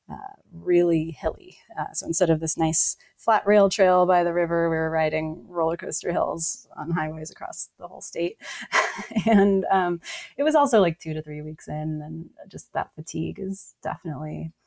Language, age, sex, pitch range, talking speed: English, 30-49, female, 155-200 Hz, 180 wpm